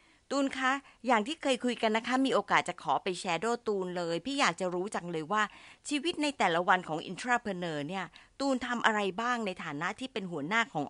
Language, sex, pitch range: Thai, female, 170-245 Hz